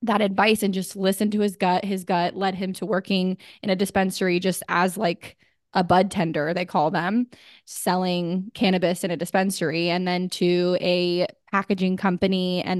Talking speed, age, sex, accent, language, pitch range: 180 wpm, 20-39, female, American, English, 180-200 Hz